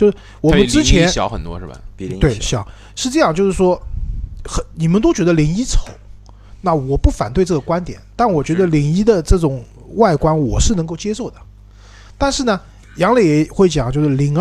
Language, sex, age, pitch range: Chinese, male, 20-39, 110-165 Hz